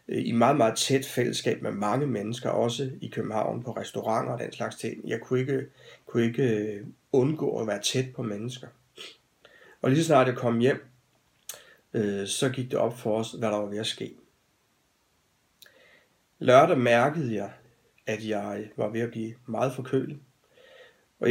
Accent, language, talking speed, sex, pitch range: native, Danish, 170 wpm, male, 110-135 Hz